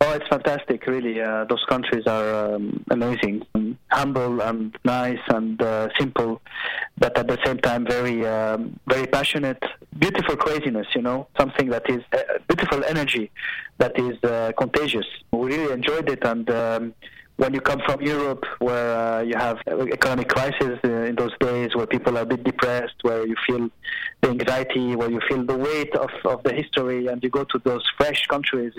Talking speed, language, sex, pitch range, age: 185 wpm, English, male, 115-135 Hz, 20-39